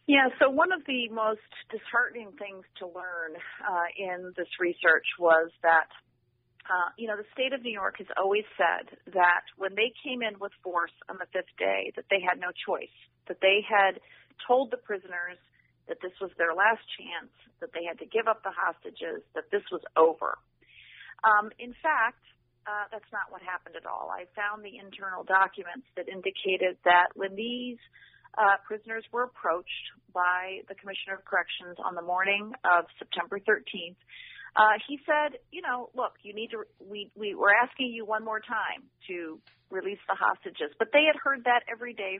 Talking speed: 185 wpm